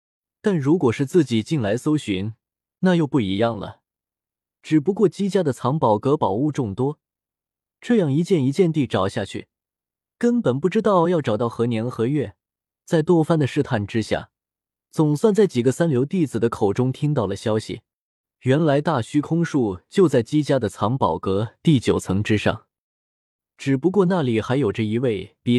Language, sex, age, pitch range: Chinese, male, 20-39, 115-165 Hz